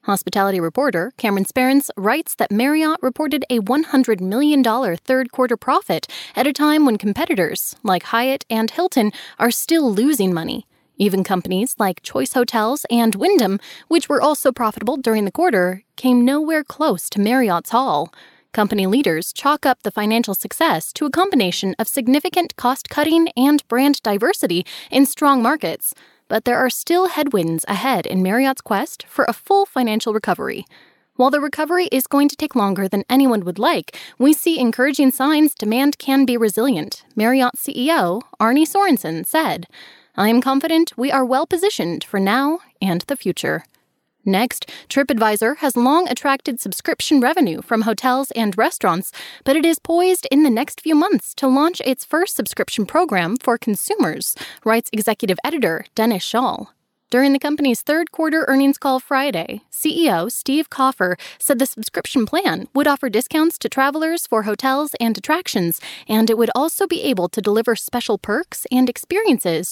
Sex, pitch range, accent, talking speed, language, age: female, 220-295 Hz, American, 160 wpm, English, 10-29